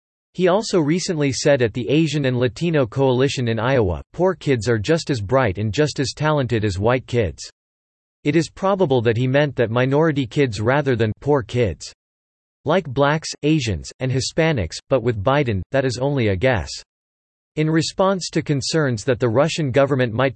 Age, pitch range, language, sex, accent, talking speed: 40-59, 120-150 Hz, English, male, American, 175 wpm